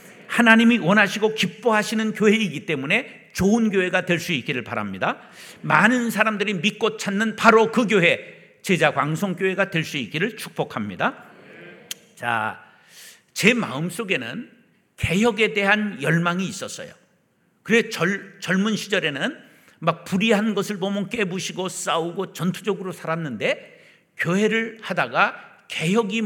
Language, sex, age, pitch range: Korean, male, 60-79, 170-210 Hz